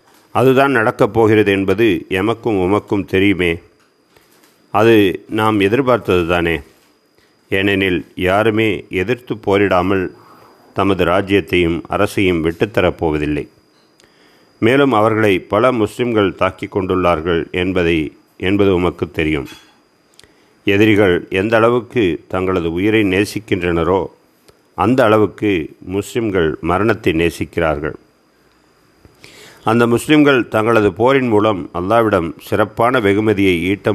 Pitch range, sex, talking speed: 95-110 Hz, male, 85 wpm